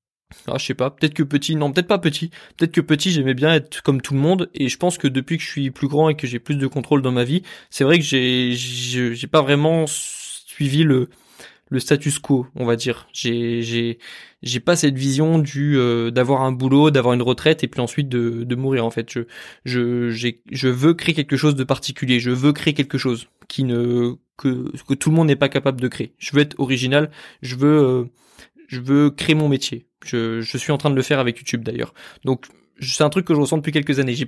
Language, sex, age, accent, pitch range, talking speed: French, male, 20-39, French, 125-155 Hz, 245 wpm